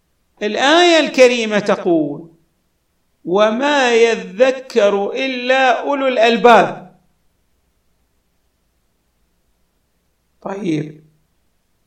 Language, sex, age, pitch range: Arabic, male, 50-69, 165-265 Hz